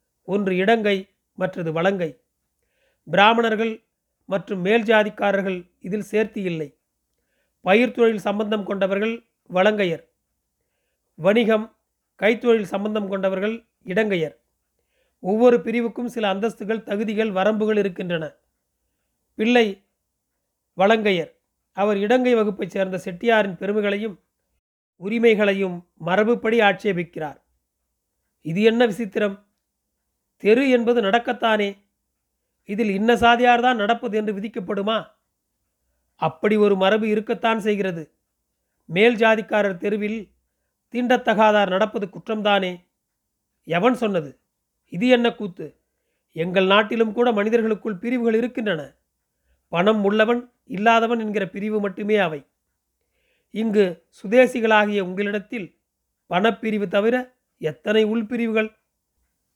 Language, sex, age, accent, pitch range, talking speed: Tamil, male, 40-59, native, 195-225 Hz, 85 wpm